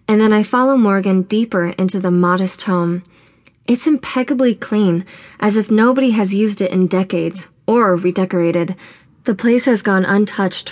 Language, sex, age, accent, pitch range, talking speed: English, female, 20-39, American, 180-220 Hz, 155 wpm